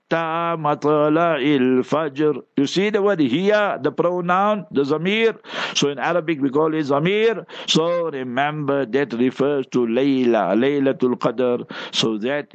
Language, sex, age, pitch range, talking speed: English, male, 60-79, 125-175 Hz, 125 wpm